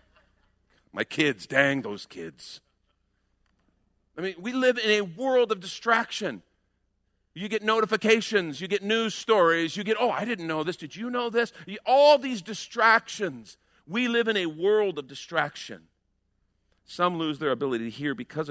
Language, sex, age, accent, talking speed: English, male, 50-69, American, 160 wpm